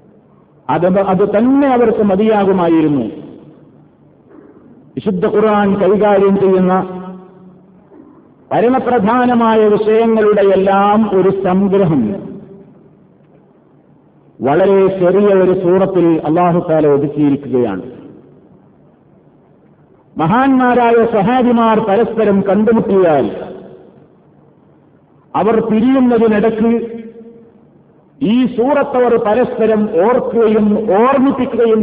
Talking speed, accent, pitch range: 55 wpm, native, 190-230 Hz